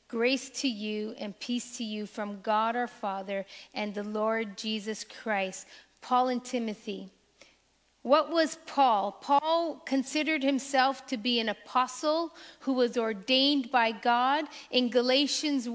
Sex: female